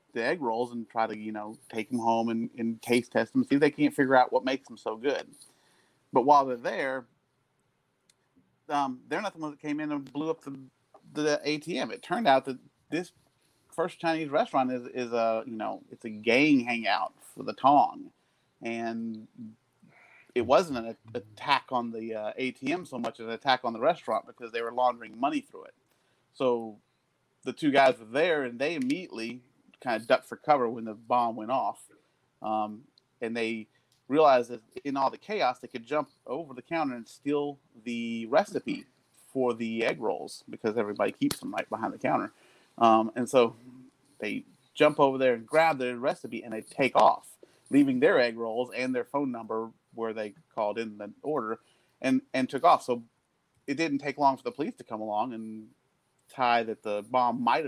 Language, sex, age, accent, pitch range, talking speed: English, male, 30-49, American, 115-140 Hz, 195 wpm